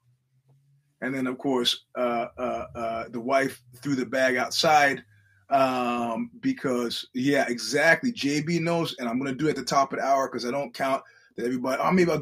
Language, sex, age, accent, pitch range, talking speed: English, male, 30-49, American, 120-150 Hz, 195 wpm